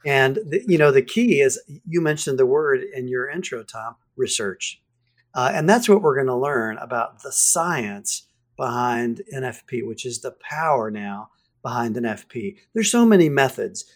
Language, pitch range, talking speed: English, 130-185 Hz, 170 wpm